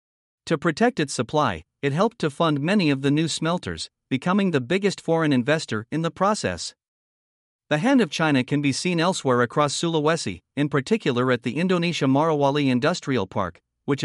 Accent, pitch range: American, 130-170 Hz